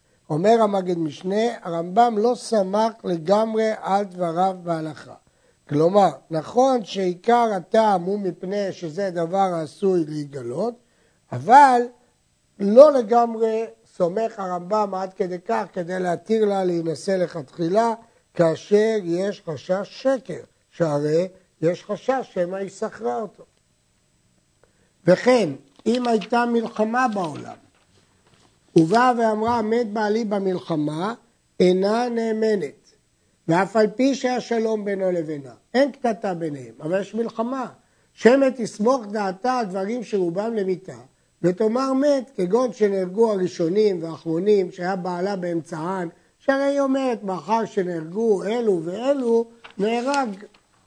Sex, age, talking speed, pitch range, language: male, 60-79, 110 wpm, 180-230 Hz, Hebrew